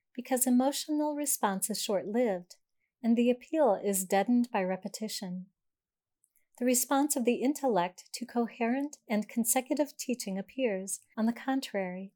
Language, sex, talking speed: English, female, 130 wpm